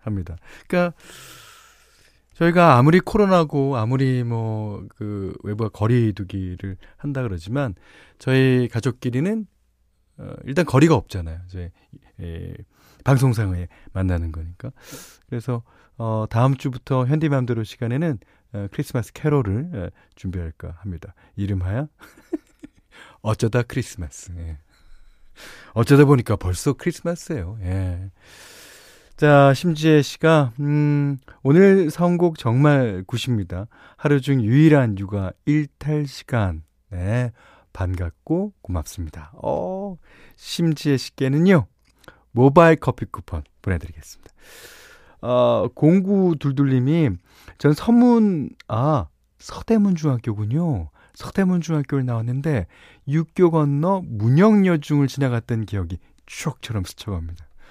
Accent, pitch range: native, 95-150 Hz